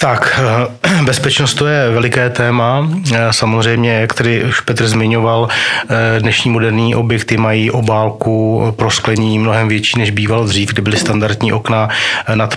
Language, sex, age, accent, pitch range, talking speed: Czech, male, 30-49, native, 110-115 Hz, 140 wpm